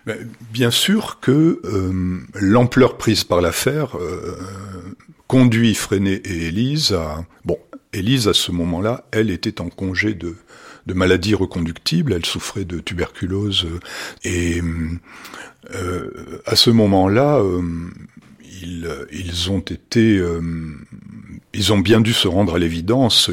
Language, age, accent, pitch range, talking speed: French, 50-69, French, 85-110 Hz, 130 wpm